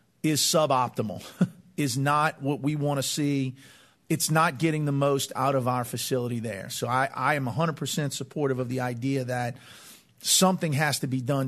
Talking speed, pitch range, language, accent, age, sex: 180 wpm, 130-150 Hz, English, American, 50-69, male